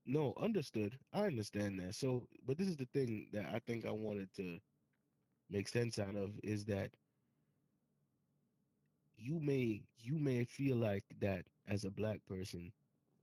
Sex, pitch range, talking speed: male, 95-115 Hz, 155 wpm